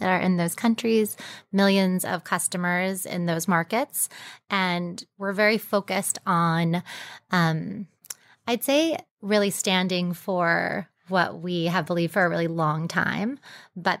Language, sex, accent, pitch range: English, female, American, 180-210 Hz